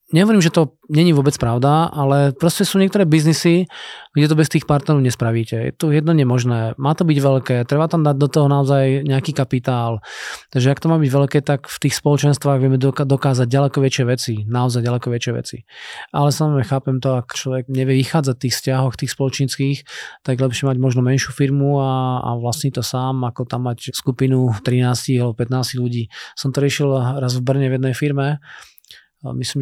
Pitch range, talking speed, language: 130-145 Hz, 195 wpm, Slovak